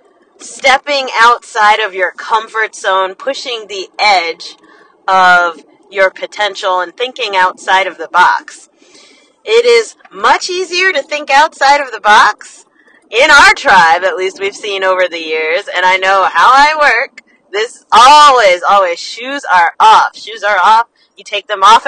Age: 30-49